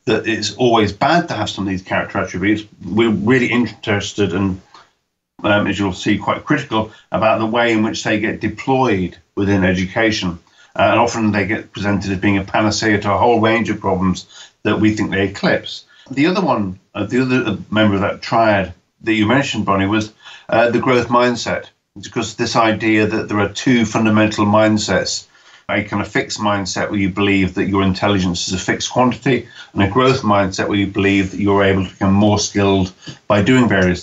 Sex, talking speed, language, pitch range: male, 200 wpm, English, 100-115 Hz